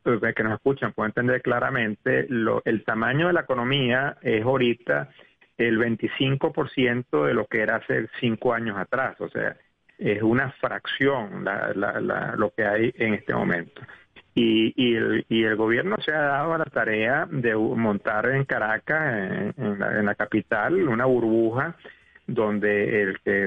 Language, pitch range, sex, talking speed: Spanish, 110-130 Hz, male, 145 wpm